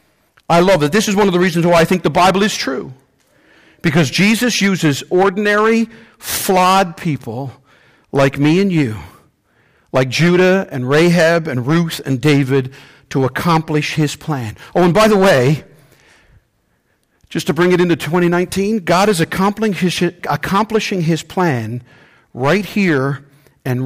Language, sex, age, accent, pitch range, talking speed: English, male, 50-69, American, 135-180 Hz, 145 wpm